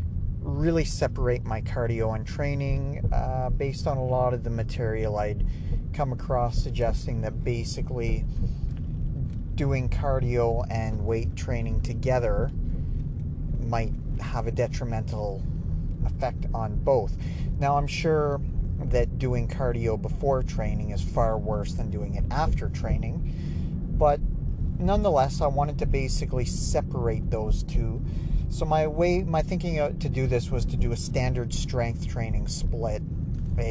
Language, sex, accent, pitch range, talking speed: English, male, American, 105-135 Hz, 135 wpm